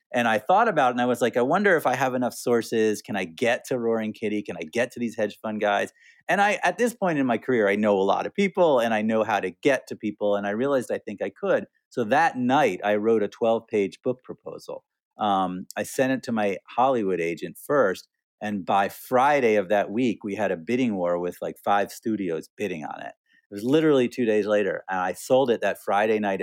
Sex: male